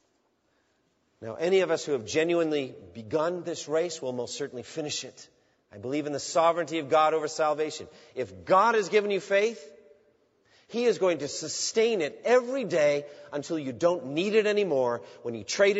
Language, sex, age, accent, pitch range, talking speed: English, male, 40-59, American, 130-185 Hz, 180 wpm